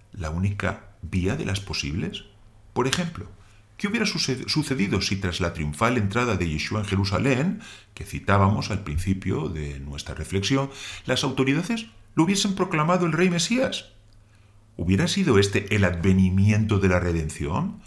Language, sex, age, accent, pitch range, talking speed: Spanish, male, 50-69, Spanish, 95-140 Hz, 145 wpm